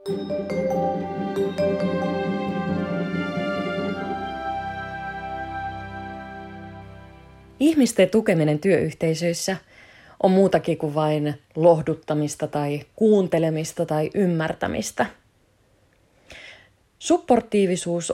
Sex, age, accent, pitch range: female, 20-39, native, 145-195 Hz